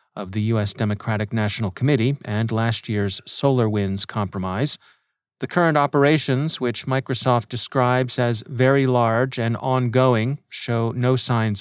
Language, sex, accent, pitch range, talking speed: English, male, American, 115-140 Hz, 130 wpm